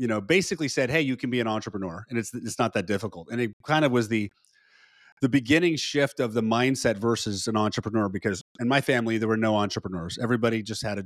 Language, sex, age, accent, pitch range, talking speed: English, male, 30-49, American, 110-135 Hz, 235 wpm